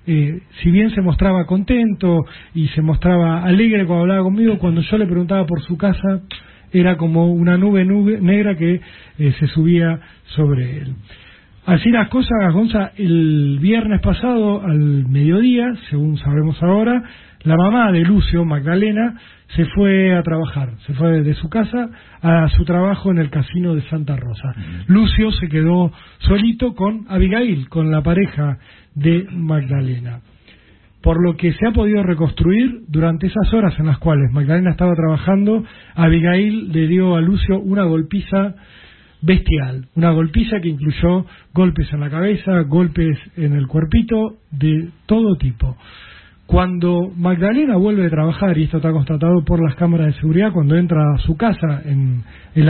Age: 40-59